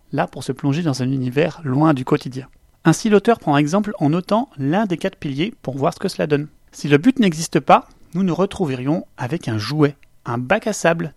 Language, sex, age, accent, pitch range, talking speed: French, male, 30-49, French, 140-180 Hz, 220 wpm